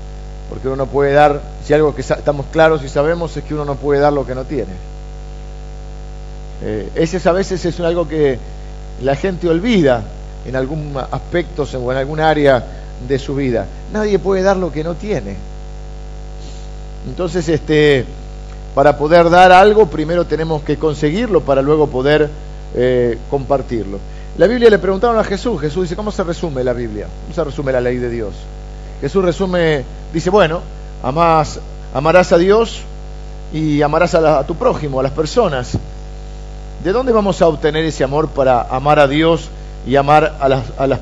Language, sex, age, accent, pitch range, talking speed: Spanish, male, 50-69, Argentinian, 130-170 Hz, 175 wpm